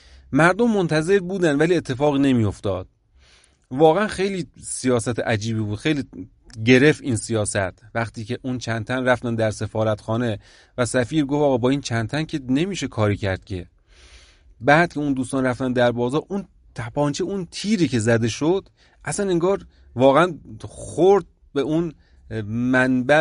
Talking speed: 140 wpm